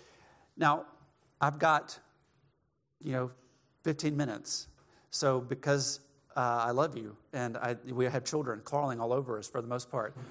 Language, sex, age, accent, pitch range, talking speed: English, male, 40-59, American, 120-145 Hz, 145 wpm